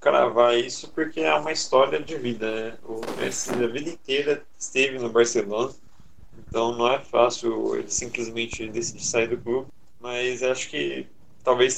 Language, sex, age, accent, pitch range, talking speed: Portuguese, male, 20-39, Brazilian, 110-130 Hz, 160 wpm